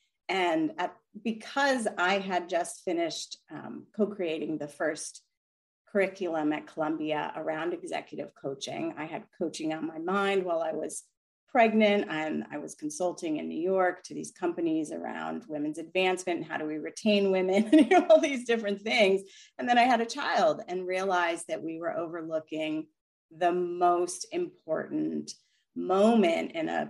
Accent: American